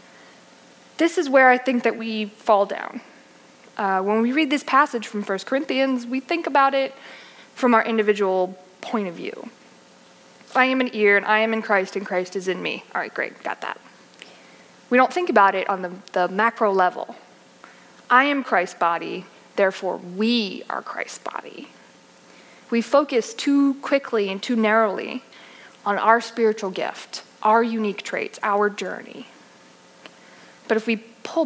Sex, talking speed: female, 165 wpm